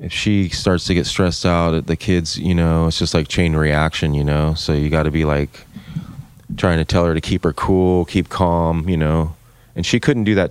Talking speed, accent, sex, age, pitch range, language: 240 wpm, American, male, 30-49, 85-115 Hz, English